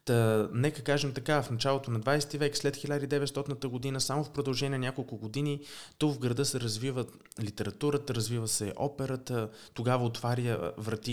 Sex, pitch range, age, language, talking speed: male, 115-145 Hz, 20-39, Bulgarian, 155 wpm